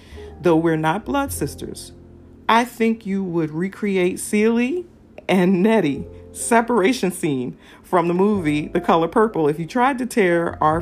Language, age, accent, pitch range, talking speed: English, 40-59, American, 145-210 Hz, 150 wpm